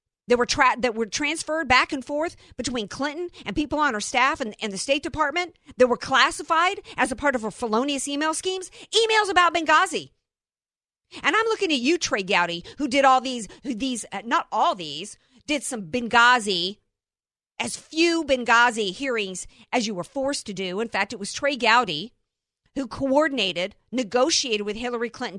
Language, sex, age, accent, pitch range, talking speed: English, female, 50-69, American, 220-315 Hz, 175 wpm